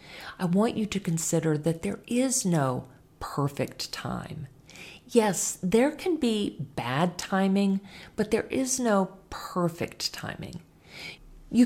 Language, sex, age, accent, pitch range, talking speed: English, female, 40-59, American, 160-230 Hz, 125 wpm